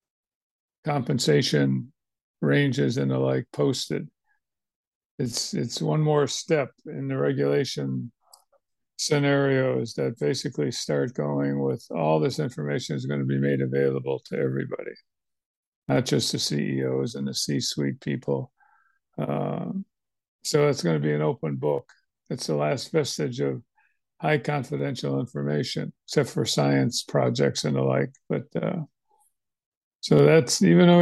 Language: English